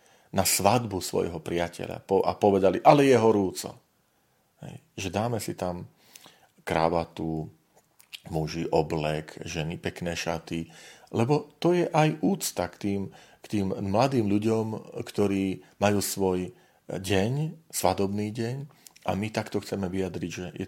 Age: 40-59